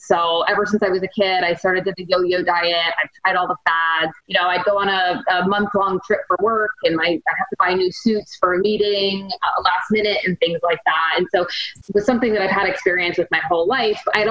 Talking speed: 265 wpm